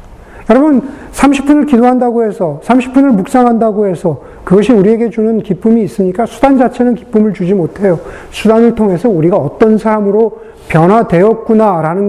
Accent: native